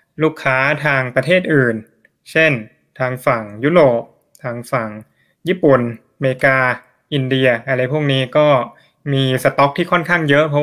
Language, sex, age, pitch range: Thai, male, 20-39, 125-150 Hz